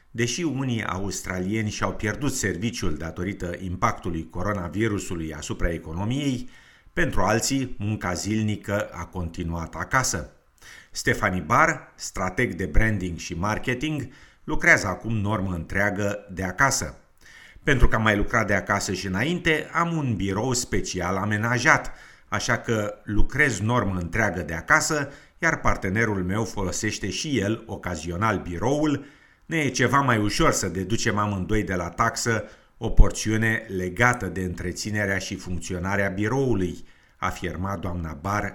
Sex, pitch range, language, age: male, 90-120 Hz, Romanian, 50-69